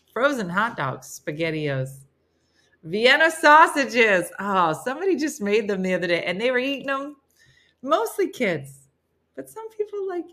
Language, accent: English, American